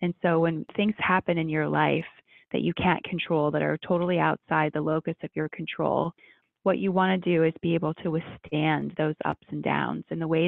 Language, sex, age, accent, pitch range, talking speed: English, female, 20-39, American, 160-185 Hz, 220 wpm